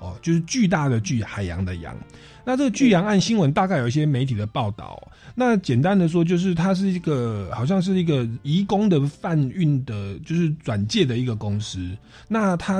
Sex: male